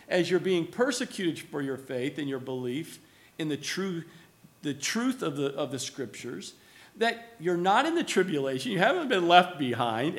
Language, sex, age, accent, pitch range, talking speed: English, male, 50-69, American, 165-220 Hz, 185 wpm